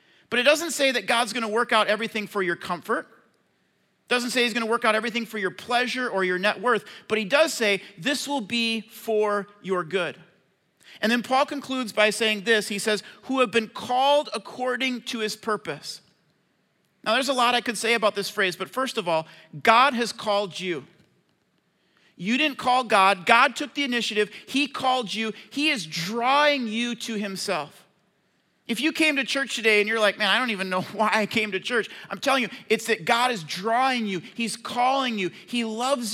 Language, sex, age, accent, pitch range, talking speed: English, male, 40-59, American, 200-250 Hz, 210 wpm